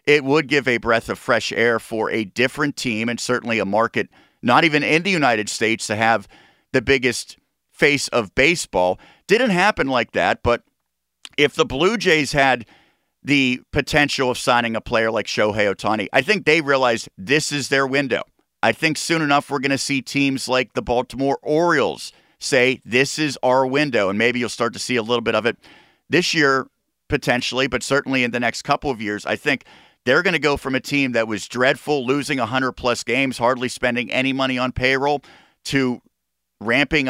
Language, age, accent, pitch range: English, 50-69, American, 120-145 Hz